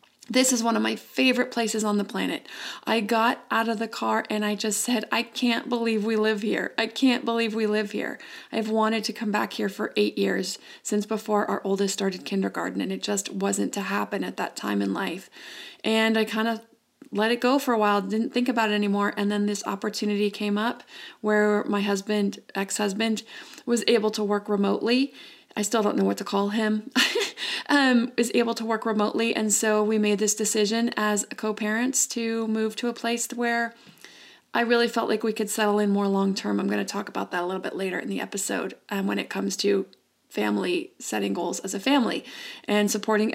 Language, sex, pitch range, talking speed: English, female, 205-230 Hz, 210 wpm